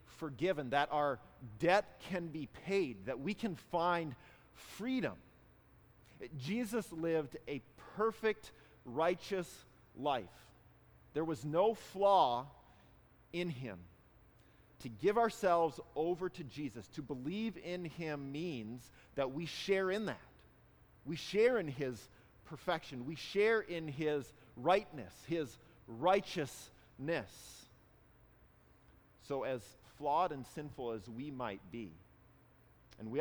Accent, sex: American, male